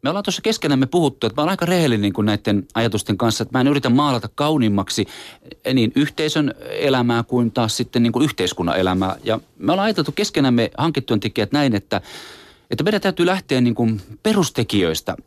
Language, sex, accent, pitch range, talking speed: Finnish, male, native, 110-150 Hz, 175 wpm